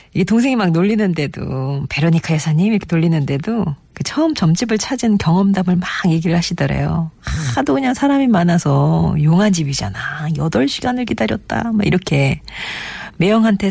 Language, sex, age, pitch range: Korean, female, 40-59, 150-210 Hz